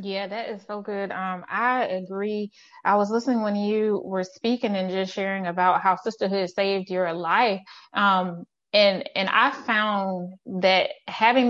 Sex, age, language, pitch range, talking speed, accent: female, 20-39, English, 190-230 Hz, 160 wpm, American